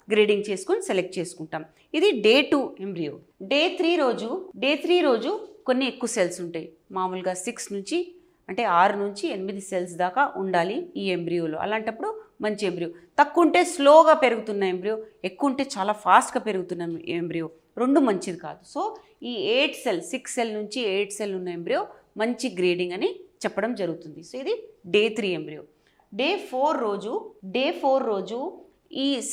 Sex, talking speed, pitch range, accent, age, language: female, 100 wpm, 185-275 Hz, Indian, 30-49, English